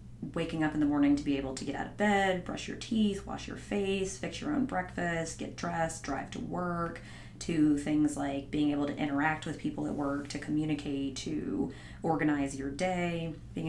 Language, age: English, 30-49